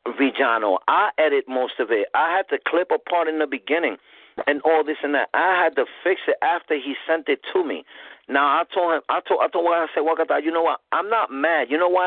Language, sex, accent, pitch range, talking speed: English, male, American, 135-180 Hz, 265 wpm